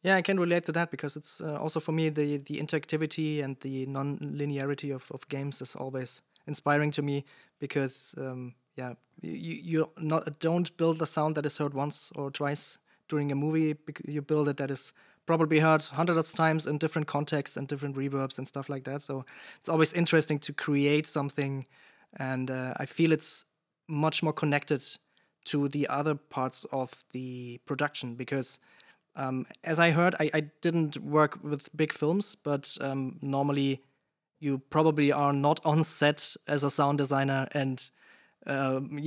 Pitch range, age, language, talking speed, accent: 135-155 Hz, 20-39, English, 175 wpm, German